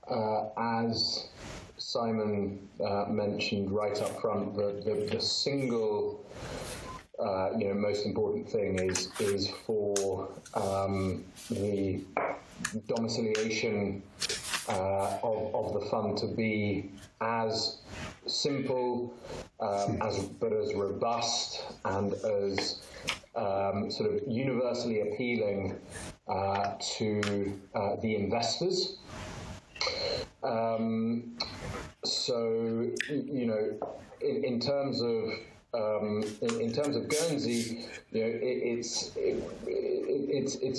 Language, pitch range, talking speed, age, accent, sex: English, 100-120 Hz, 105 wpm, 30-49, British, male